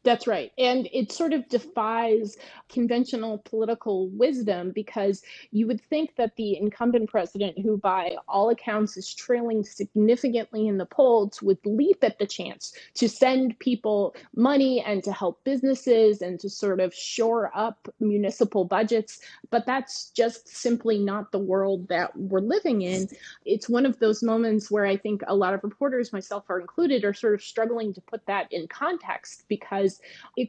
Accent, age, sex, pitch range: American, 30-49, female, 200-260 Hz